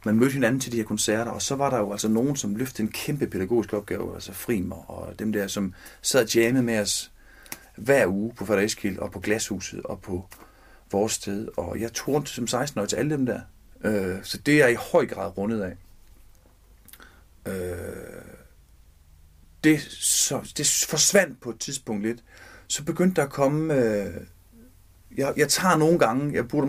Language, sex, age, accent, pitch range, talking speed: Danish, male, 40-59, native, 95-135 Hz, 190 wpm